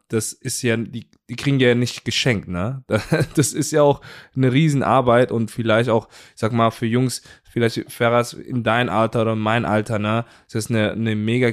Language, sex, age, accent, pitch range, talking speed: German, male, 20-39, German, 110-130 Hz, 205 wpm